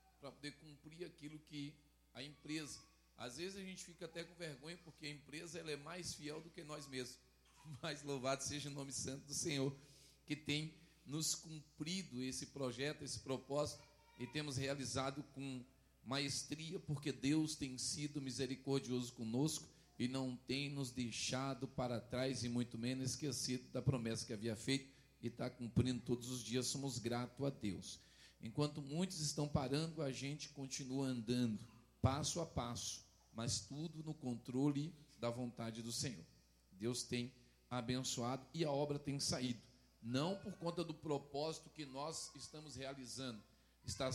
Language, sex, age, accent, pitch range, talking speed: Portuguese, male, 40-59, Brazilian, 125-150 Hz, 160 wpm